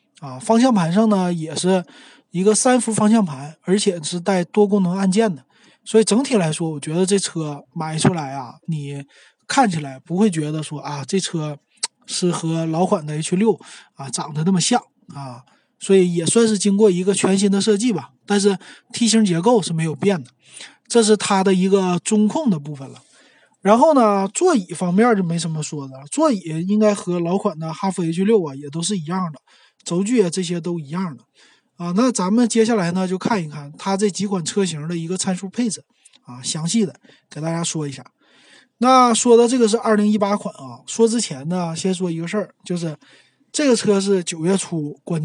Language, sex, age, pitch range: Chinese, male, 20-39, 160-215 Hz